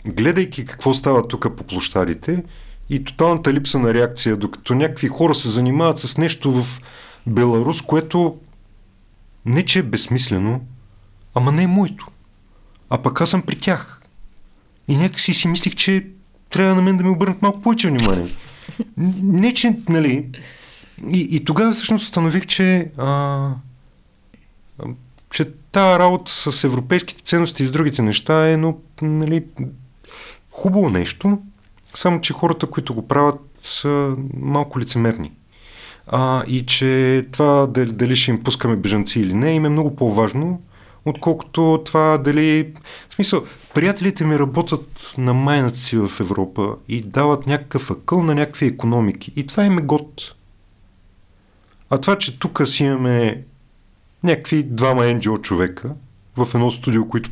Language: Bulgarian